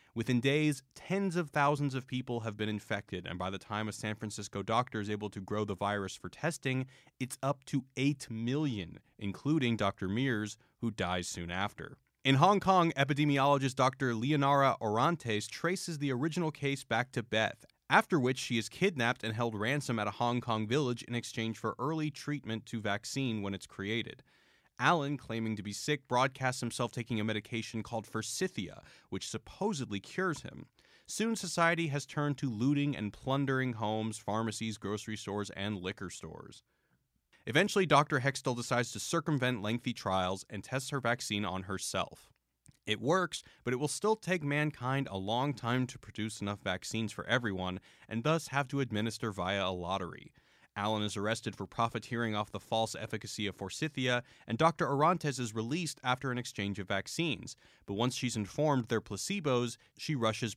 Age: 30-49